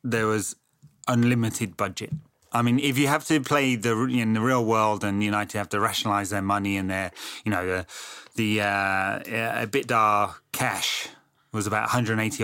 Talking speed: 175 wpm